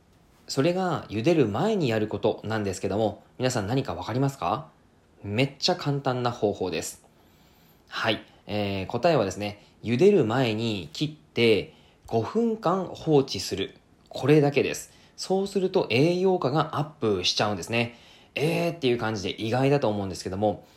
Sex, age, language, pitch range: male, 20-39, Japanese, 105-160 Hz